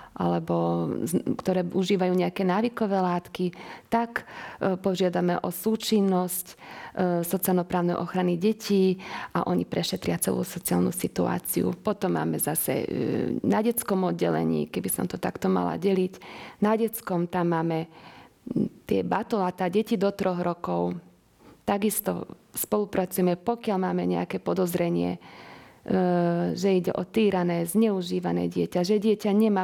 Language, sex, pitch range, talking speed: Slovak, female, 175-200 Hz, 115 wpm